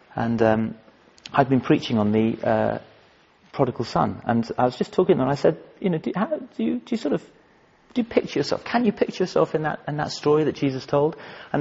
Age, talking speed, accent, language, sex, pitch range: 40-59, 240 wpm, British, English, male, 125-195 Hz